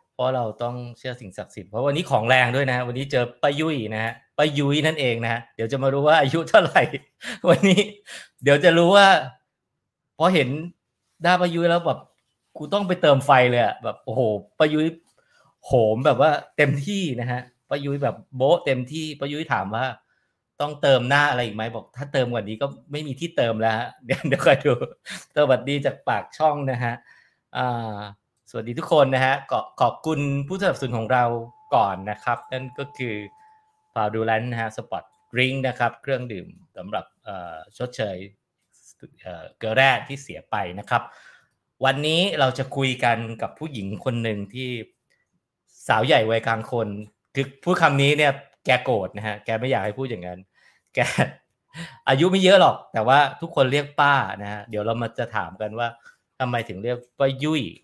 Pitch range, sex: 115-150 Hz, male